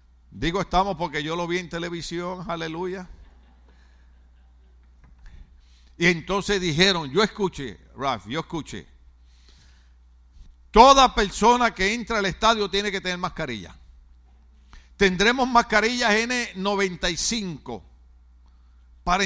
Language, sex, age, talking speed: Spanish, male, 50-69, 95 wpm